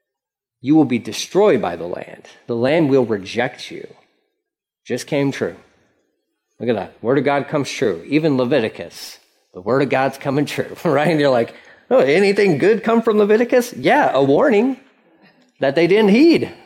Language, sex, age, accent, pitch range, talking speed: English, male, 30-49, American, 160-220 Hz, 175 wpm